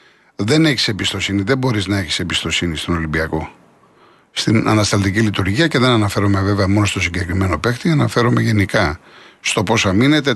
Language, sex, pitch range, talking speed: Greek, male, 100-130 Hz, 150 wpm